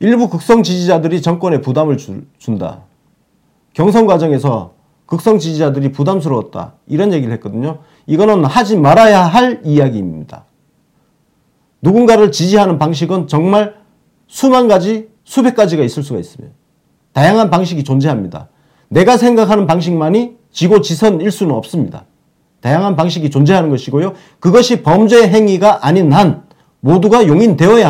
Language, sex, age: Korean, male, 40-59